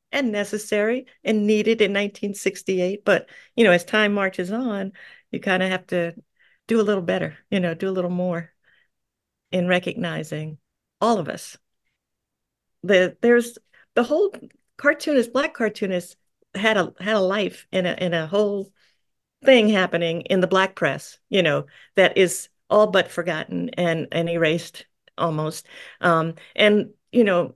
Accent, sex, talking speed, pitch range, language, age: American, female, 155 wpm, 175-215 Hz, English, 50-69